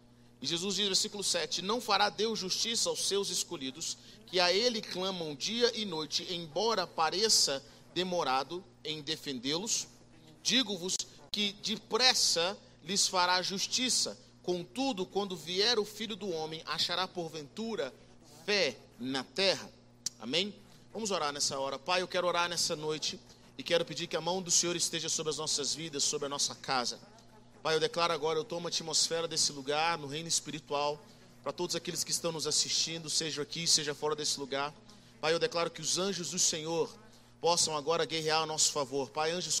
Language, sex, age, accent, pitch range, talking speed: Portuguese, male, 40-59, Brazilian, 150-185 Hz, 170 wpm